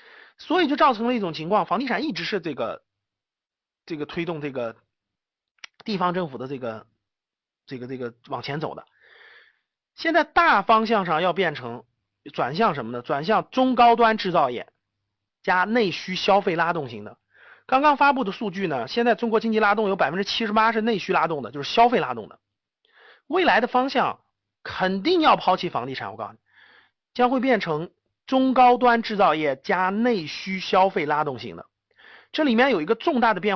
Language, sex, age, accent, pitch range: Chinese, male, 30-49, native, 140-235 Hz